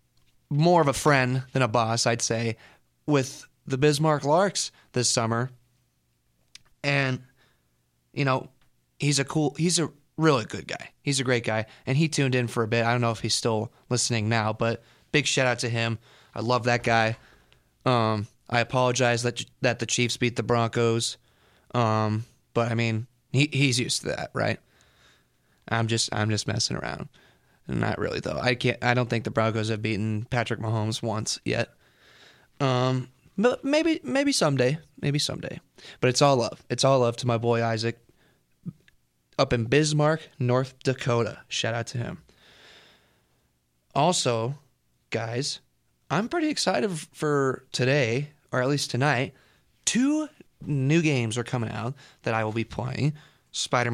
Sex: male